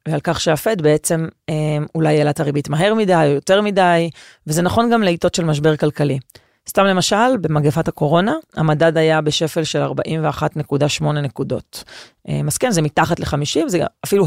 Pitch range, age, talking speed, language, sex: 155-185 Hz, 30-49, 155 wpm, Hebrew, female